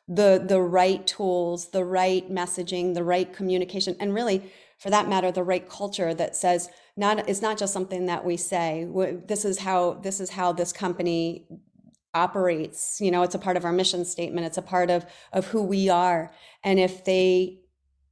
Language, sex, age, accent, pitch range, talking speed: English, female, 30-49, American, 170-190 Hz, 190 wpm